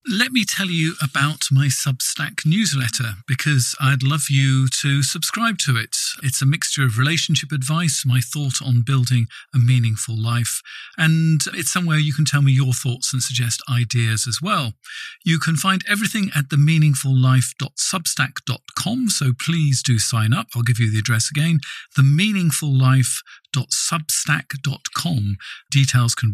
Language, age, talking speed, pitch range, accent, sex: English, 40-59, 145 wpm, 120-155 Hz, British, male